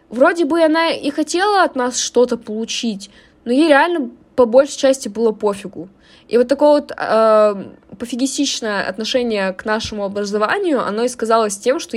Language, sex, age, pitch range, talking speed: Russian, female, 20-39, 210-270 Hz, 160 wpm